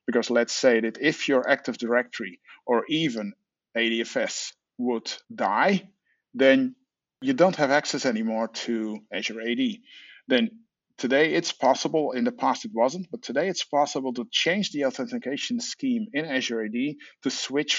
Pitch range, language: 120-185 Hz, English